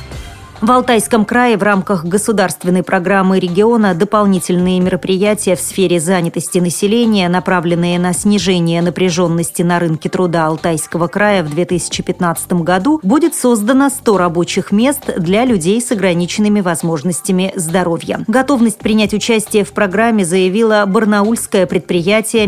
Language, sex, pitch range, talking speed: Russian, female, 175-225 Hz, 120 wpm